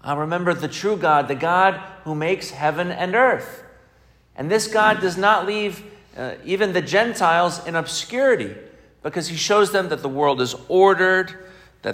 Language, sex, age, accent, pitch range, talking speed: English, male, 40-59, American, 140-195 Hz, 170 wpm